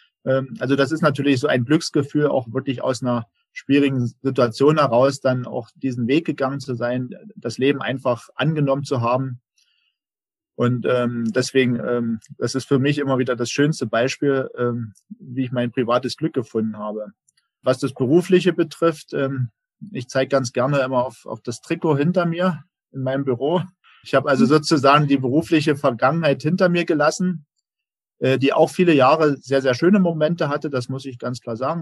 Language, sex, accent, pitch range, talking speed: German, male, German, 125-150 Hz, 165 wpm